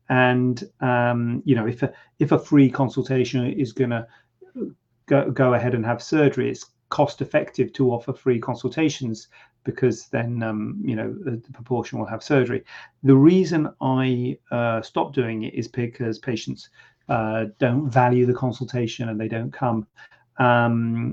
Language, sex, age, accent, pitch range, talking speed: English, male, 40-59, British, 115-135 Hz, 155 wpm